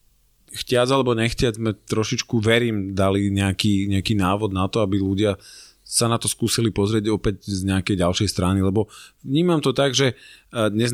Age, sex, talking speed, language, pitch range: 30-49, male, 165 wpm, Slovak, 95-110 Hz